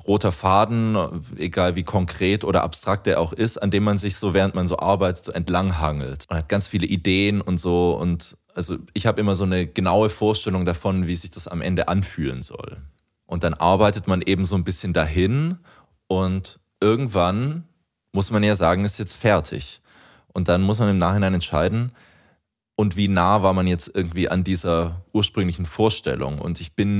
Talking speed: 185 wpm